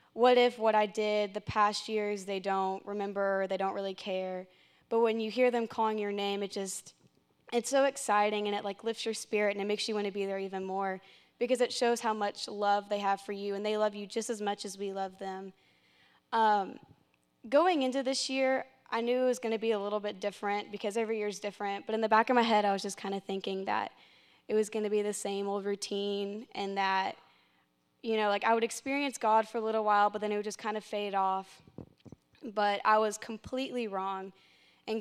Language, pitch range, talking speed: English, 200-225 Hz, 235 wpm